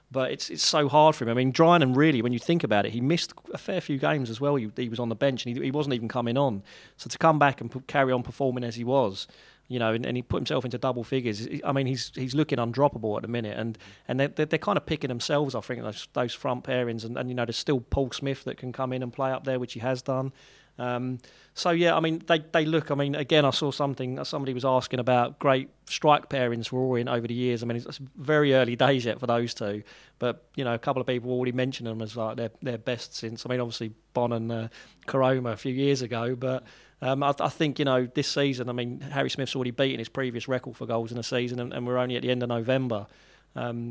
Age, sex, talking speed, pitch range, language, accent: 30-49, male, 270 wpm, 120-135 Hz, English, British